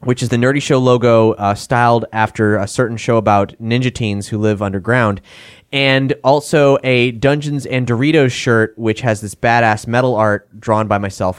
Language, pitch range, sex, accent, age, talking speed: English, 115-170 Hz, male, American, 20-39, 180 wpm